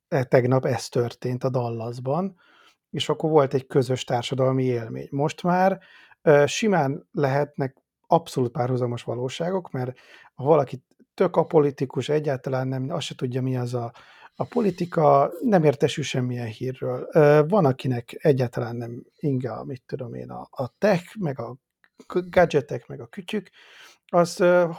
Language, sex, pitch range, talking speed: Hungarian, male, 130-160 Hz, 140 wpm